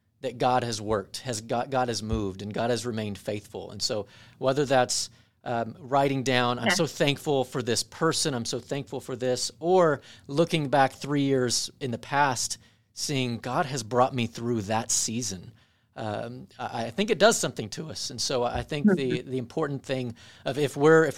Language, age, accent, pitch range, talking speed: English, 40-59, American, 110-140 Hz, 195 wpm